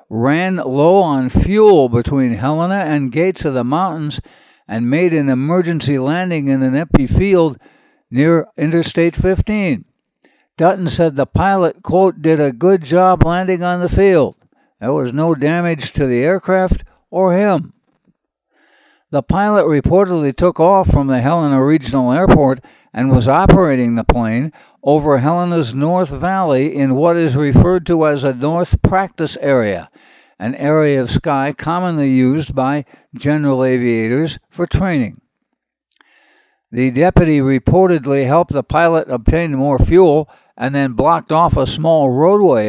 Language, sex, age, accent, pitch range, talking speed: English, male, 60-79, American, 135-175 Hz, 140 wpm